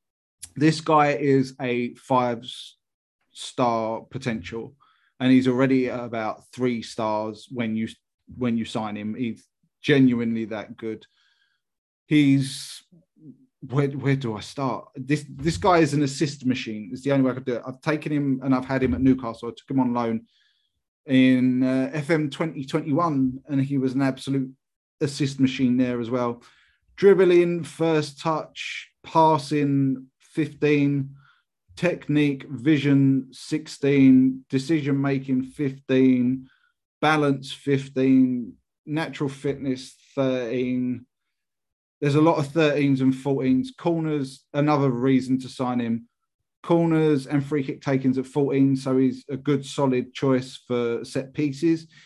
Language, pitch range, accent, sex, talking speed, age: English, 130-150 Hz, British, male, 135 wpm, 30-49